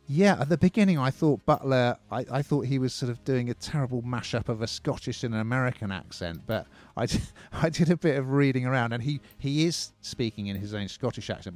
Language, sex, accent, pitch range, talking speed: English, male, British, 105-135 Hz, 230 wpm